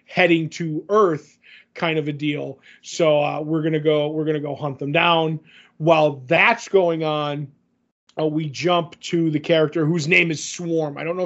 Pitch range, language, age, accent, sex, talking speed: 150-175 Hz, English, 30-49, American, male, 195 wpm